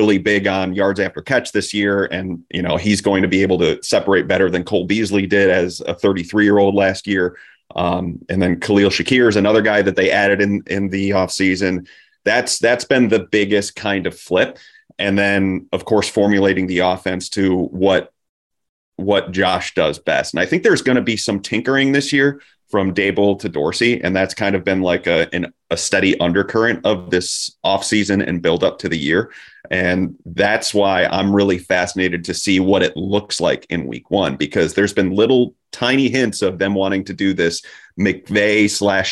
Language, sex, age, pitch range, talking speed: English, male, 30-49, 95-105 Hz, 200 wpm